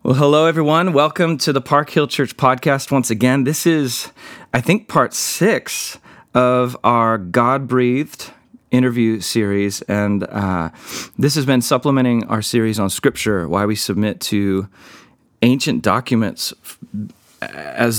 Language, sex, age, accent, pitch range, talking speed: English, male, 30-49, American, 100-125 Hz, 135 wpm